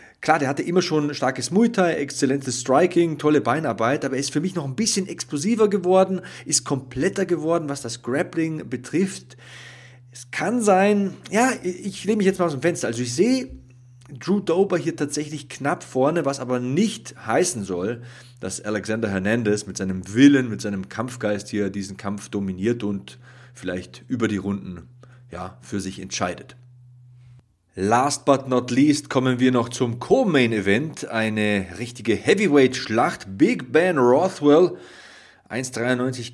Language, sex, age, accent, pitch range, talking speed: German, male, 30-49, German, 110-145 Hz, 155 wpm